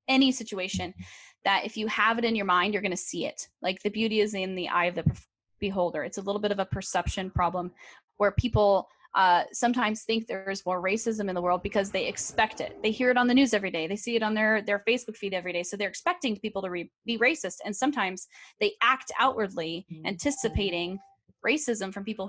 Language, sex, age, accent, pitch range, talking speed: English, female, 10-29, American, 190-245 Hz, 225 wpm